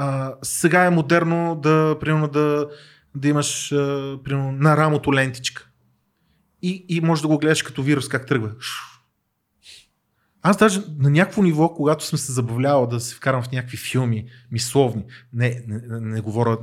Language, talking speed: Bulgarian, 160 wpm